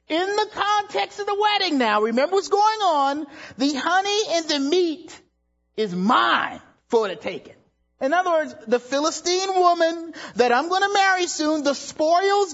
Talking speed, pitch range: 170 wpm, 215-350 Hz